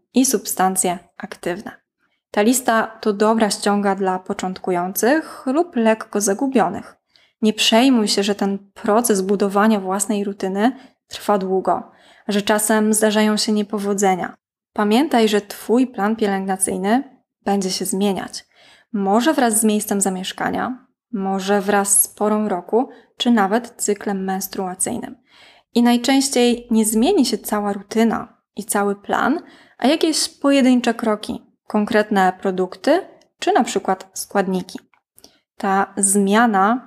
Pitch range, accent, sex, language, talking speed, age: 200-240 Hz, native, female, Polish, 120 wpm, 20-39